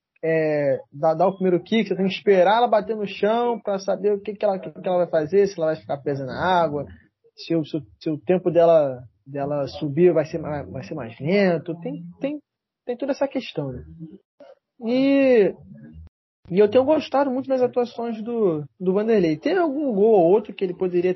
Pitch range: 155-215 Hz